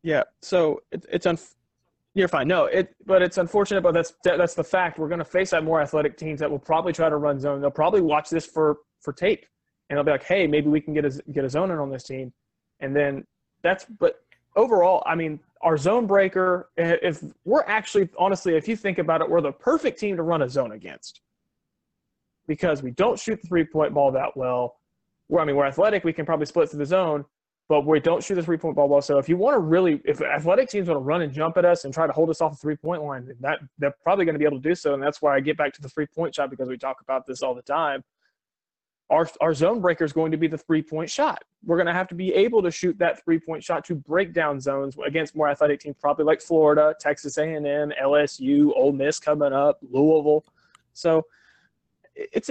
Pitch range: 145-180 Hz